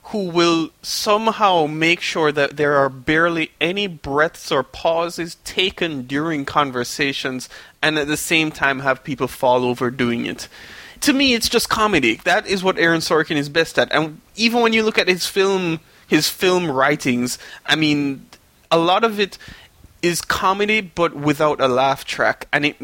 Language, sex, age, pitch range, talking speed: English, male, 20-39, 140-190 Hz, 170 wpm